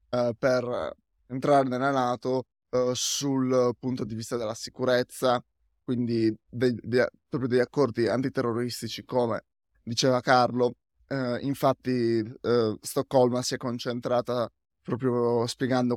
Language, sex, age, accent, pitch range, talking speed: Italian, male, 20-39, native, 120-135 Hz, 115 wpm